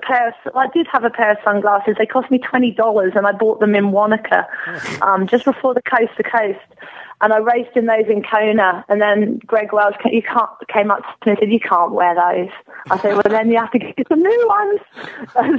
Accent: British